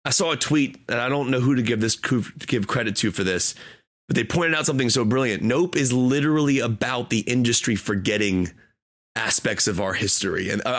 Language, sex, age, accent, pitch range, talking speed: English, male, 30-49, American, 110-130 Hz, 200 wpm